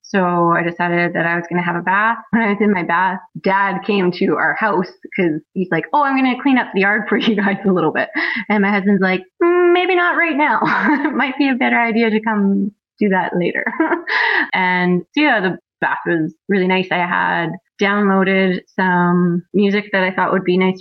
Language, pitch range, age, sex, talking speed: English, 175-210 Hz, 20-39, female, 220 wpm